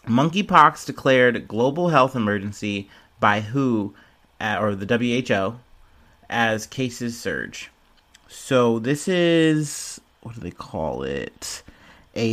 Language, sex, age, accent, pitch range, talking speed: English, male, 30-49, American, 100-135 Hz, 105 wpm